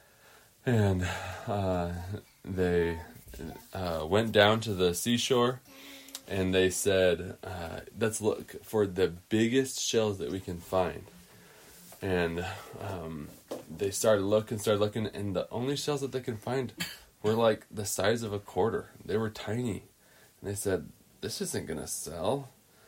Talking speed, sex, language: 145 wpm, male, English